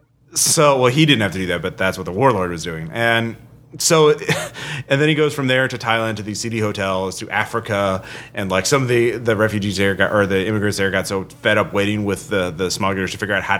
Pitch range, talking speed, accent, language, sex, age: 105-145 Hz, 265 wpm, American, English, male, 30-49